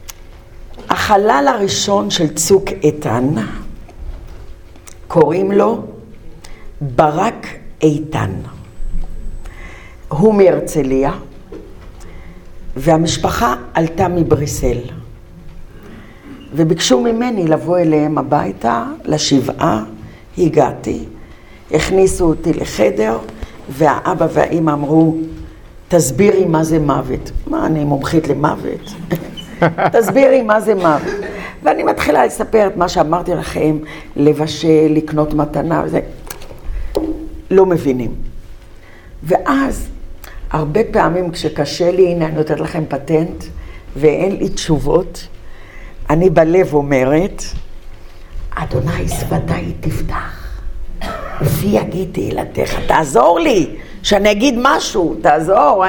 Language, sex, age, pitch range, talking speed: Hebrew, female, 60-79, 110-175 Hz, 85 wpm